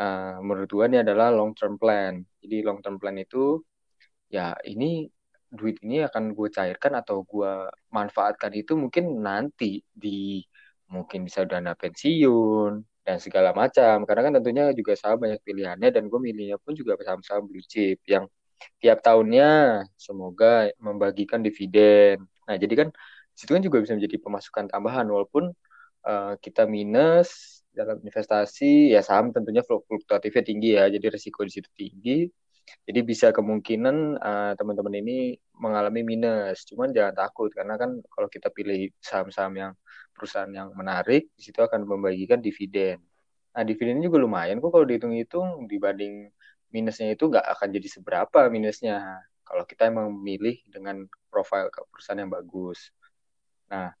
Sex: male